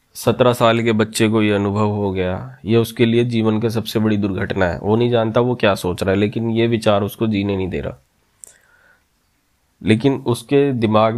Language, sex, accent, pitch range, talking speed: Hindi, male, native, 105-115 Hz, 200 wpm